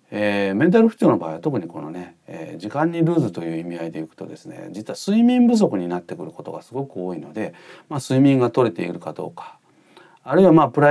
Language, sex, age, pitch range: Japanese, male, 40-59, 105-165 Hz